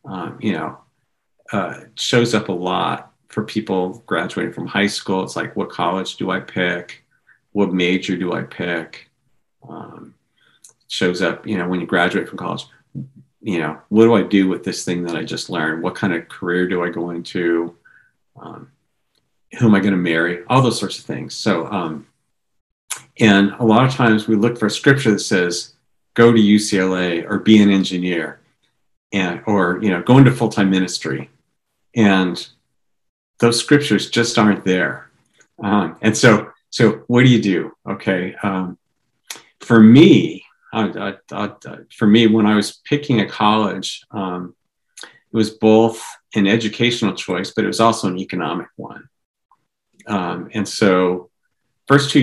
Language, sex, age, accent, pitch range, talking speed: English, male, 50-69, American, 90-110 Hz, 170 wpm